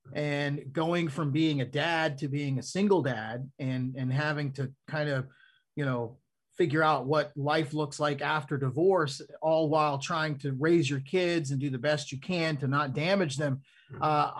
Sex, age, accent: male, 30-49, American